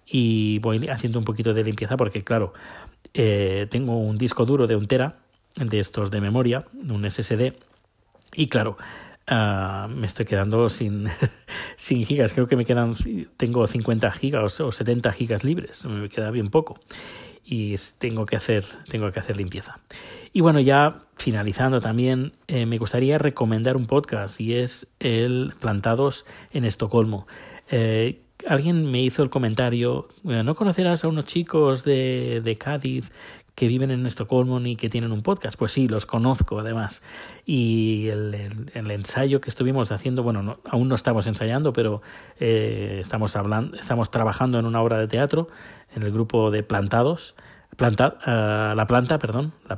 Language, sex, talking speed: Spanish, male, 160 wpm